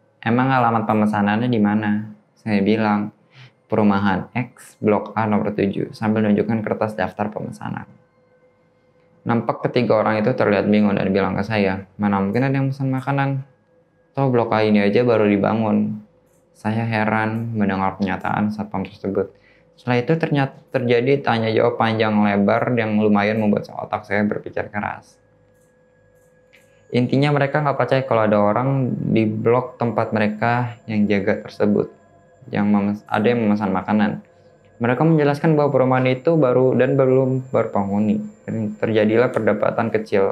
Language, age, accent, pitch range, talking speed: Indonesian, 10-29, native, 105-130 Hz, 145 wpm